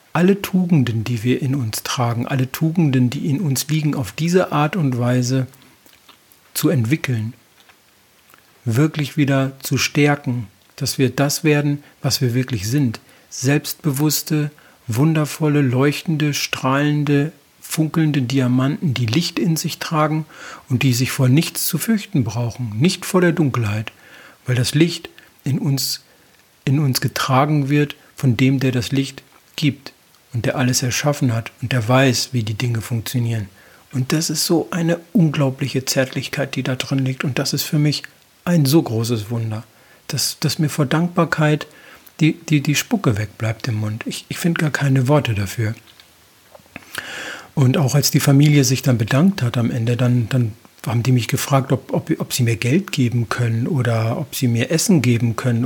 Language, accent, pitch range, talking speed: German, German, 125-150 Hz, 165 wpm